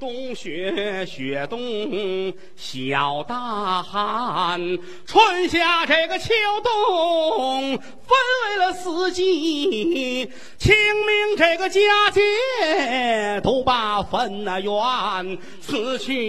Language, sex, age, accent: Chinese, male, 40-59, native